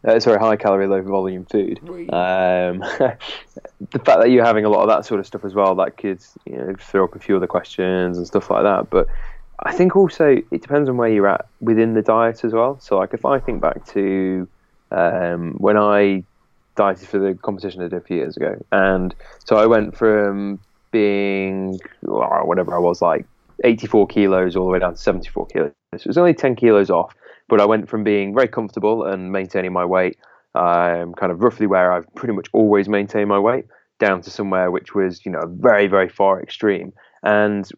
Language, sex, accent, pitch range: English, male, British, 90-105 Hz